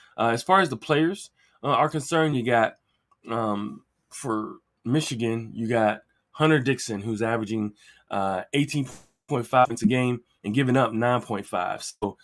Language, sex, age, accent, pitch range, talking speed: English, male, 20-39, American, 110-145 Hz, 140 wpm